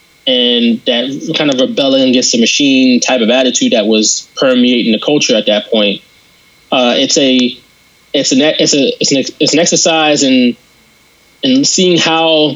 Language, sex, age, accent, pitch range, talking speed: English, male, 20-39, American, 130-175 Hz, 170 wpm